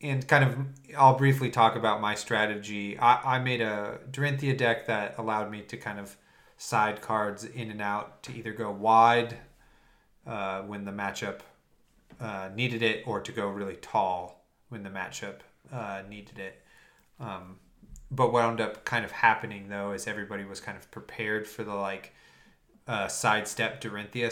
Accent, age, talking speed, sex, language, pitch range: American, 30-49, 170 wpm, male, English, 100-120 Hz